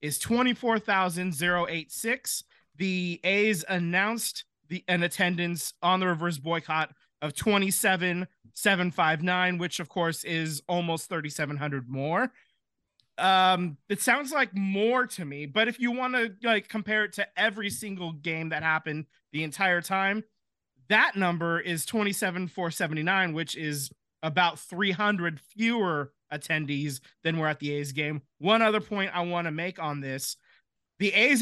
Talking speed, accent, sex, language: 140 wpm, American, male, English